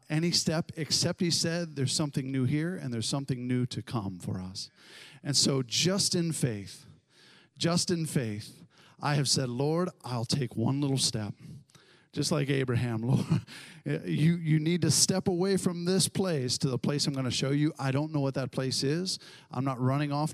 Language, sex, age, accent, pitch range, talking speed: English, male, 50-69, American, 130-160 Hz, 195 wpm